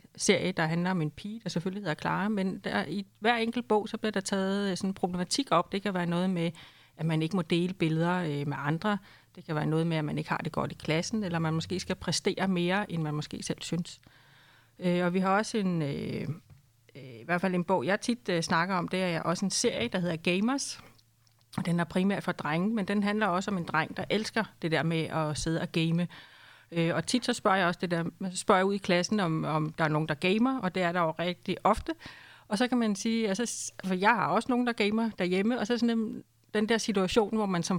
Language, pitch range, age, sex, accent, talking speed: Danish, 165-210 Hz, 30-49, female, native, 250 wpm